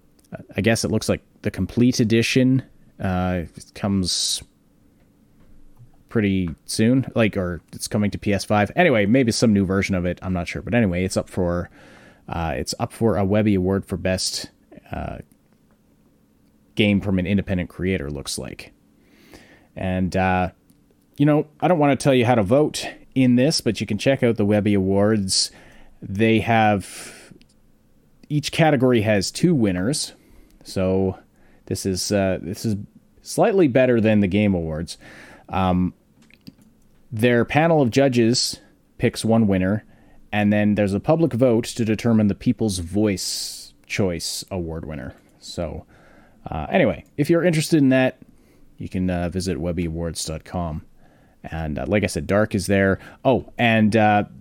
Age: 30-49